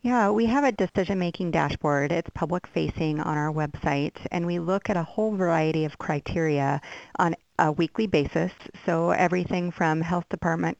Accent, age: American, 50-69